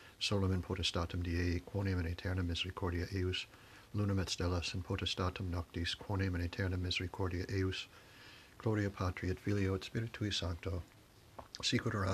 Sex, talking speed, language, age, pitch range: male, 135 wpm, English, 60-79, 90-100 Hz